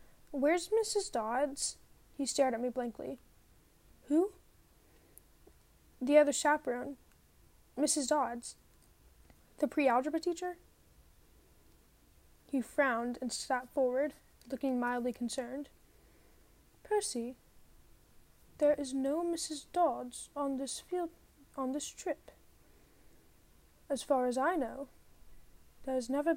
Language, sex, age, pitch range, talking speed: English, female, 10-29, 255-300 Hz, 100 wpm